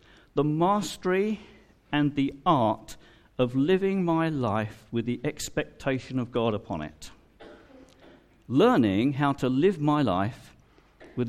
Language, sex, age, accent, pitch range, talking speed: English, male, 50-69, British, 110-170 Hz, 120 wpm